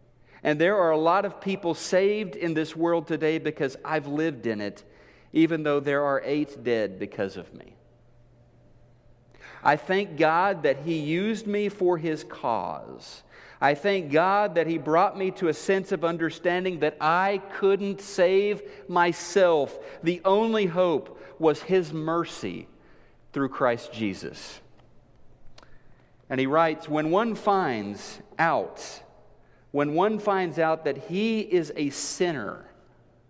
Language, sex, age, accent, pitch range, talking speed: English, male, 40-59, American, 135-185 Hz, 140 wpm